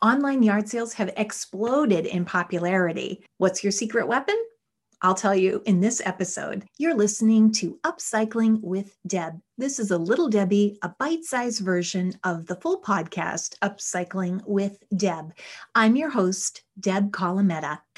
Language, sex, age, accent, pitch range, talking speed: English, female, 30-49, American, 185-235 Hz, 145 wpm